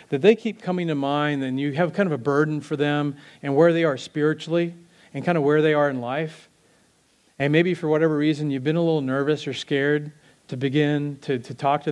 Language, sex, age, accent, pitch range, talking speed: English, male, 40-59, American, 130-150 Hz, 230 wpm